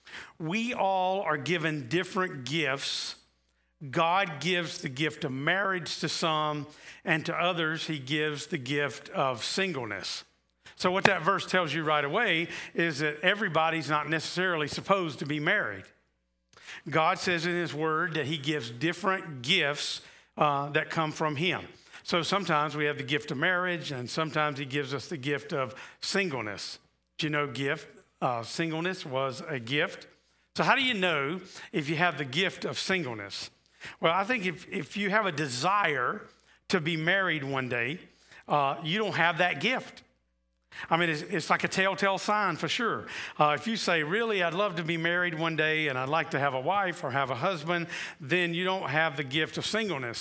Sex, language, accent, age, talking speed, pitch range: male, English, American, 50-69, 185 wpm, 150-185 Hz